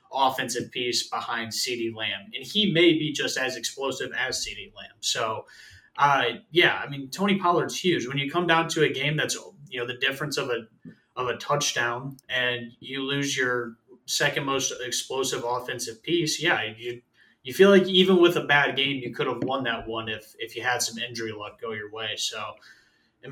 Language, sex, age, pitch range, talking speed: English, male, 20-39, 125-150 Hz, 200 wpm